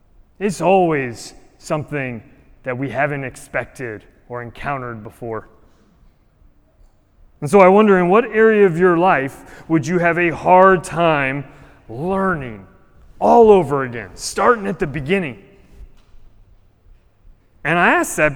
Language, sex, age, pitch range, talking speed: English, male, 30-49, 135-220 Hz, 125 wpm